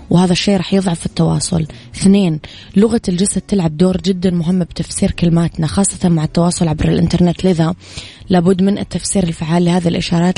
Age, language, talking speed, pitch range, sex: 20-39, Arabic, 150 wpm, 165-195 Hz, female